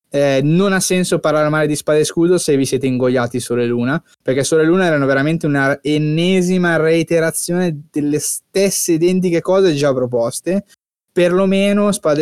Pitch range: 125-155 Hz